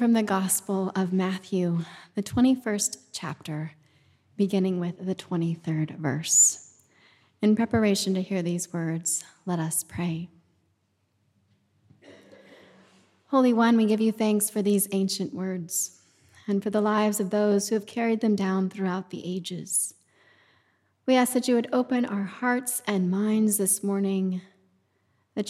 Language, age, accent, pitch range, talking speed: English, 30-49, American, 170-245 Hz, 140 wpm